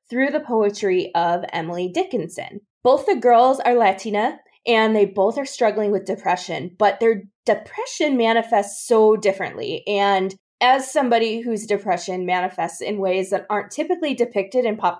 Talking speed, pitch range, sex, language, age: 150 wpm, 195-250 Hz, female, English, 20-39